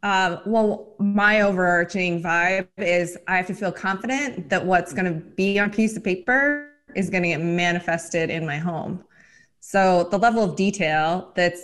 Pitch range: 175-210 Hz